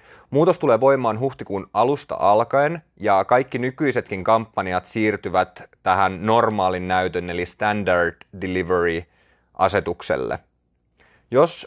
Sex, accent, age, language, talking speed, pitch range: male, native, 30-49, Finnish, 100 wpm, 90-115 Hz